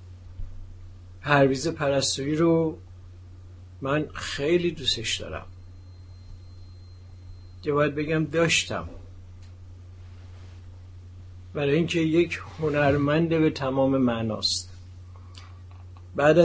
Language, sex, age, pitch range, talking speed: Persian, male, 60-79, 90-145 Hz, 65 wpm